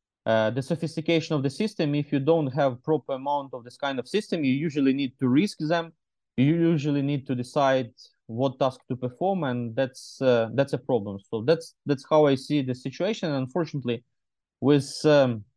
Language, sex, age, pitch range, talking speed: English, male, 20-39, 120-150 Hz, 190 wpm